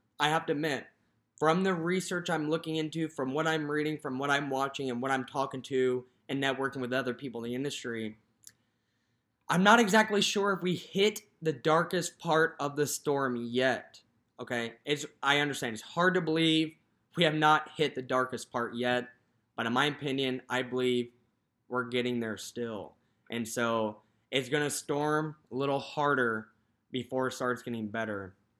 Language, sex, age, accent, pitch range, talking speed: English, male, 20-39, American, 120-155 Hz, 180 wpm